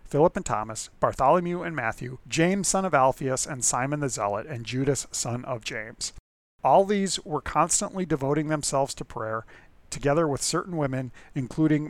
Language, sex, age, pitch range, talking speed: English, male, 40-59, 125-155 Hz, 160 wpm